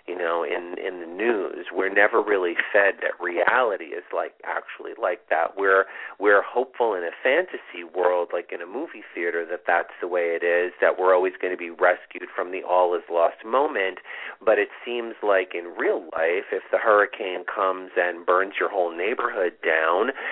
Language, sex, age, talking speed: English, male, 40-59, 190 wpm